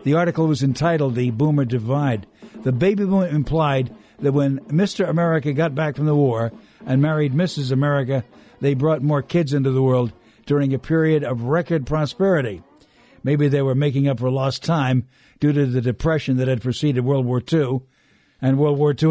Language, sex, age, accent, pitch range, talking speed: English, male, 60-79, American, 130-170 Hz, 185 wpm